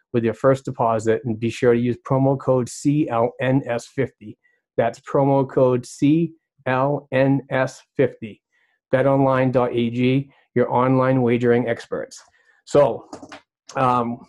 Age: 30-49